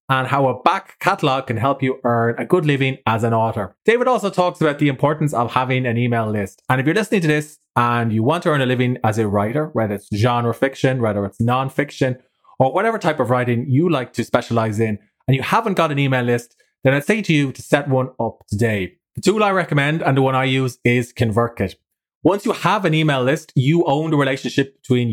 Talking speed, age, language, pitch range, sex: 235 wpm, 20-39, English, 115-150 Hz, male